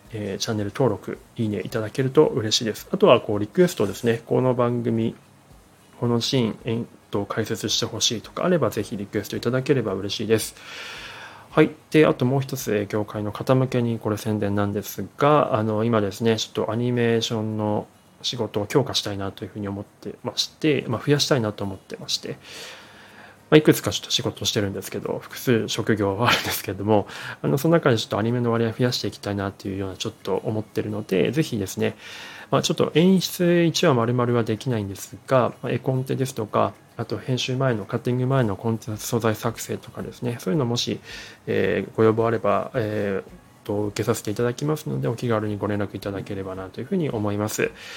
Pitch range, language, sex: 105-125 Hz, Japanese, male